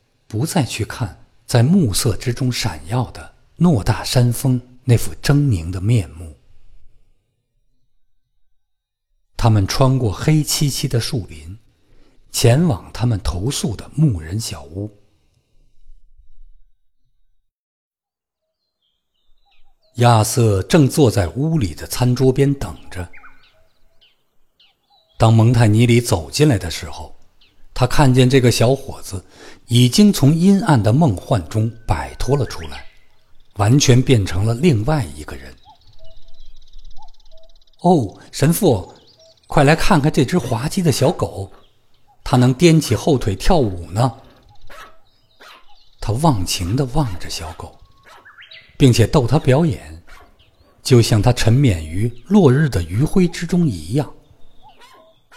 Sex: male